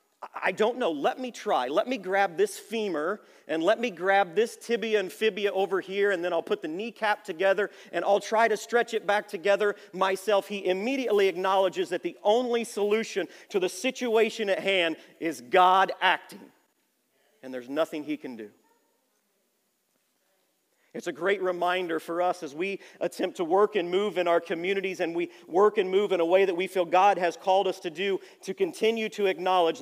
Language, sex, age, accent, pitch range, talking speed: English, male, 40-59, American, 175-220 Hz, 190 wpm